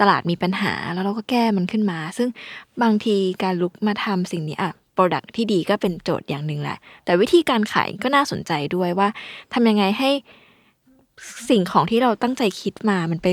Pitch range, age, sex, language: 175-230 Hz, 20-39, female, Thai